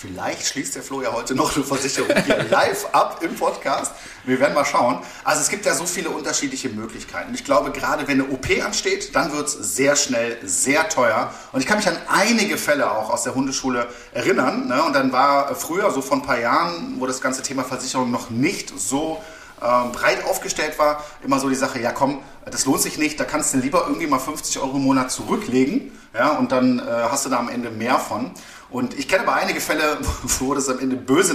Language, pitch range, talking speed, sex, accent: German, 125-155 Hz, 225 wpm, male, German